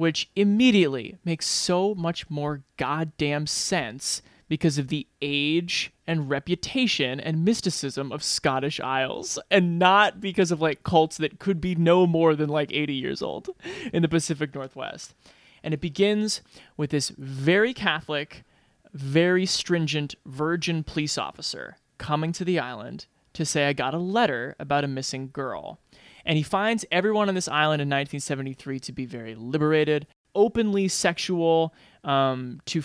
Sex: male